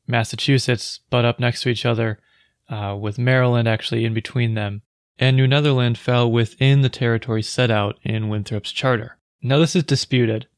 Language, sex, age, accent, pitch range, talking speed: English, male, 20-39, American, 110-130 Hz, 170 wpm